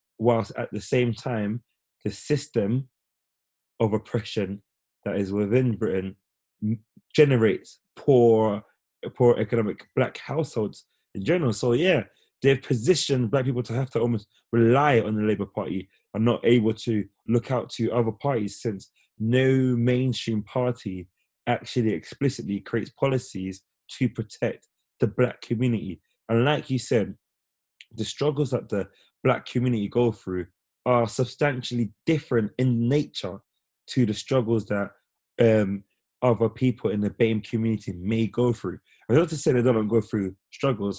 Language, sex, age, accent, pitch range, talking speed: English, male, 20-39, British, 105-125 Hz, 145 wpm